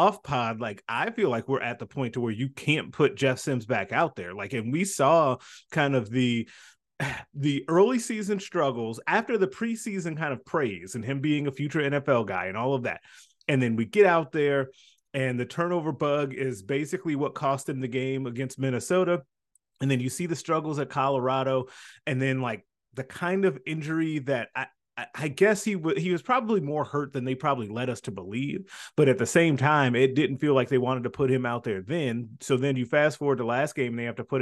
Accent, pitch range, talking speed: American, 125-150 Hz, 225 wpm